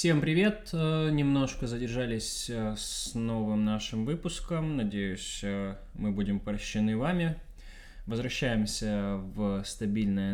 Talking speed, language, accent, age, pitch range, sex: 95 wpm, Russian, native, 20-39, 110-140 Hz, male